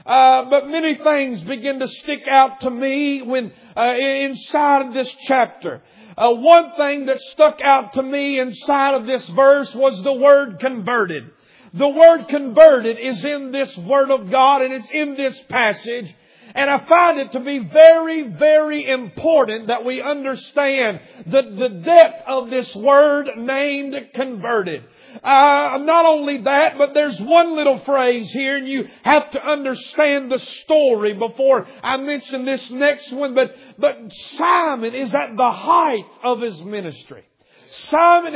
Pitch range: 250-285 Hz